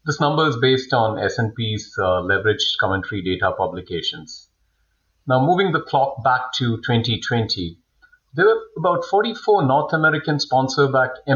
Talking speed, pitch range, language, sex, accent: 130 wpm, 110-150 Hz, English, male, Indian